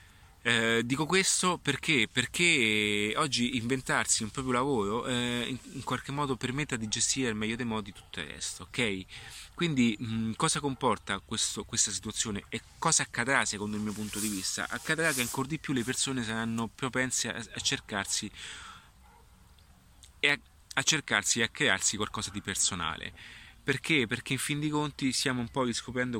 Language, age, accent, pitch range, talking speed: Italian, 30-49, native, 100-125 Hz, 170 wpm